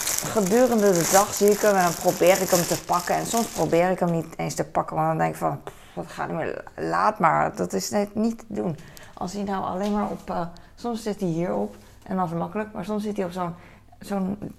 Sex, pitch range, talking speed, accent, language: female, 170-205 Hz, 255 wpm, Dutch, Dutch